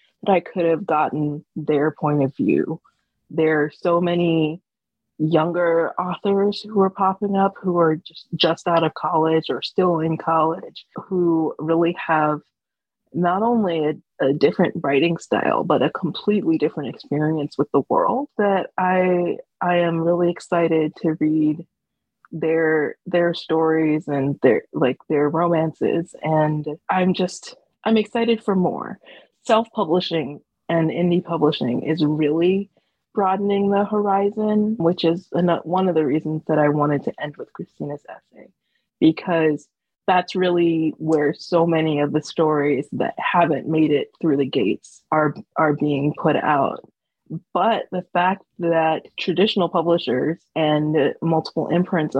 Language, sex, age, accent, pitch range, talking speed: English, female, 20-39, American, 155-180 Hz, 140 wpm